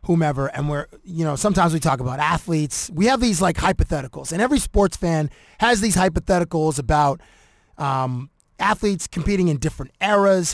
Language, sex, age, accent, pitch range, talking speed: English, male, 30-49, American, 145-180 Hz, 165 wpm